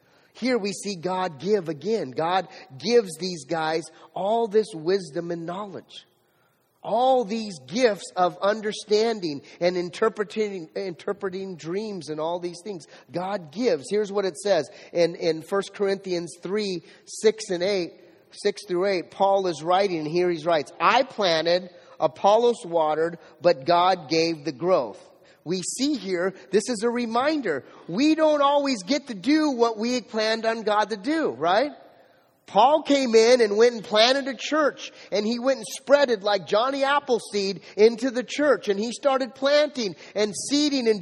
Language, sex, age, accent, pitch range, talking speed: English, male, 30-49, American, 185-260 Hz, 160 wpm